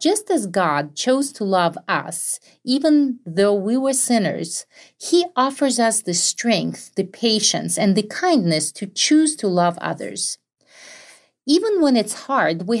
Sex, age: female, 40-59